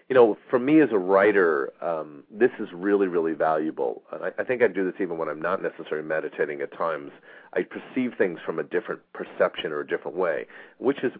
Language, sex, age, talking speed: English, male, 40-59, 215 wpm